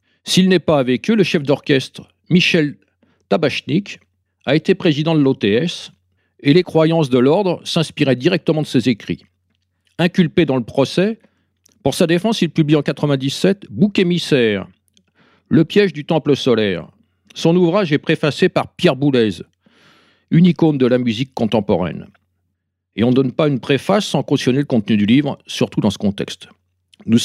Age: 50-69